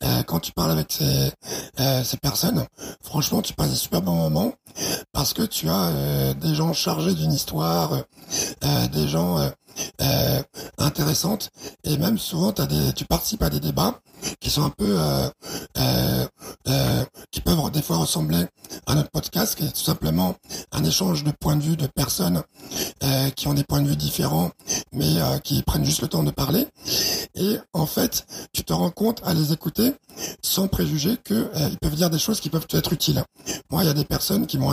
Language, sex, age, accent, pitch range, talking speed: French, male, 60-79, French, 120-180 Hz, 195 wpm